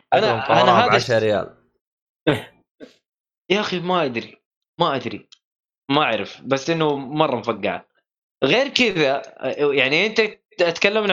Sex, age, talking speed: male, 20-39, 120 wpm